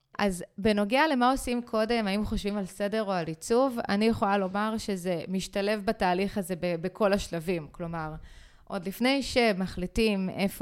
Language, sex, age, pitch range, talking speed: Hebrew, female, 20-39, 185-225 Hz, 155 wpm